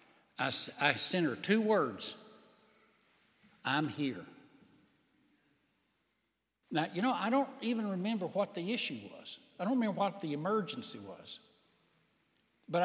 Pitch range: 195-280 Hz